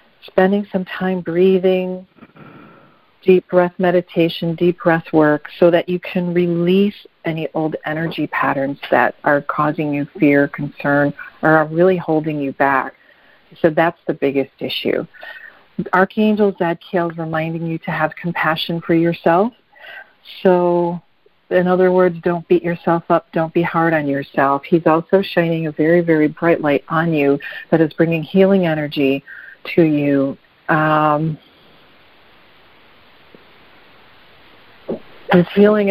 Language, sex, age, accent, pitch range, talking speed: English, female, 50-69, American, 155-180 Hz, 130 wpm